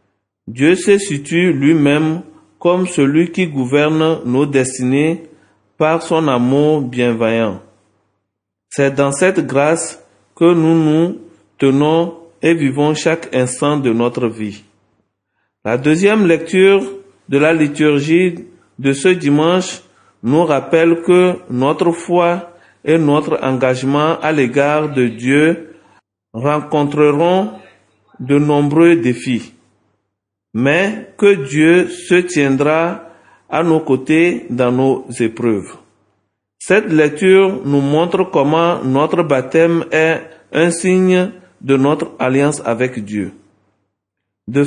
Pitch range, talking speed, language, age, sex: 125-170 Hz, 110 wpm, French, 50-69, male